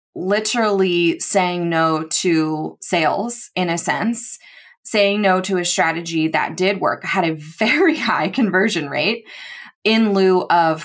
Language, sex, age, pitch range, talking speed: English, female, 20-39, 165-210 Hz, 140 wpm